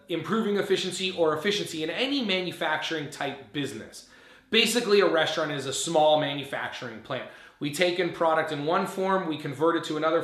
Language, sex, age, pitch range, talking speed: English, male, 30-49, 155-195 Hz, 170 wpm